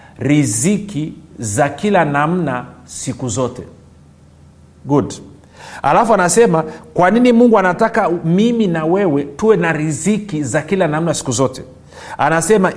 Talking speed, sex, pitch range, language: 115 wpm, male, 150-210 Hz, Swahili